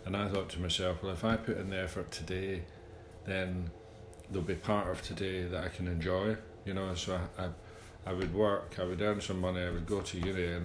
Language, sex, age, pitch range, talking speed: English, male, 40-59, 90-110 Hz, 235 wpm